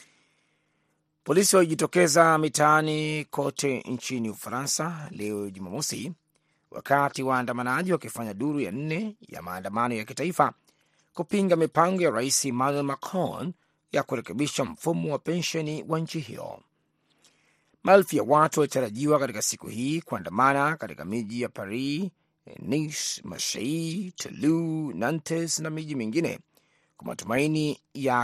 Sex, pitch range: male, 130-160 Hz